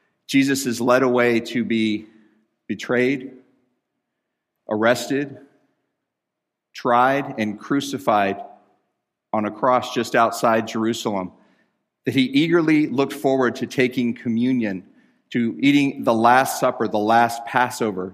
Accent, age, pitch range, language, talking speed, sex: American, 40-59, 110-130 Hz, English, 110 wpm, male